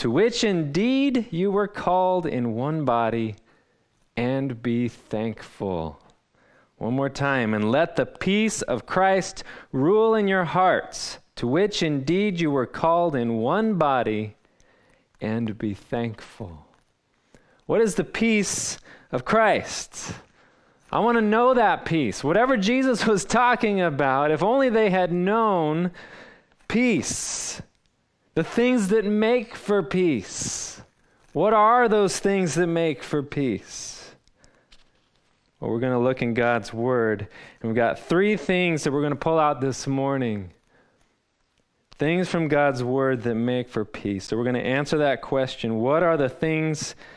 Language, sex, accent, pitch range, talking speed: English, male, American, 120-195 Hz, 145 wpm